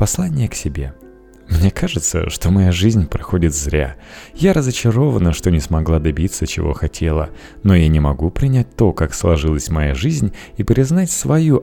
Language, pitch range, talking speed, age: Russian, 80-110 Hz, 160 wpm, 30-49